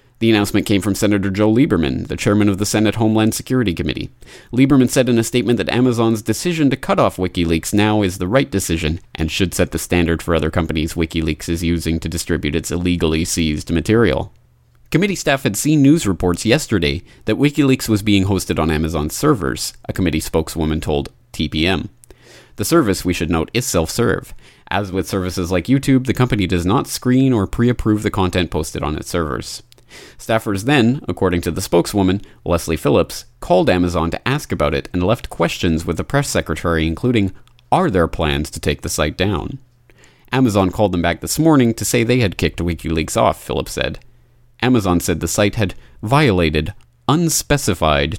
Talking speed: 180 wpm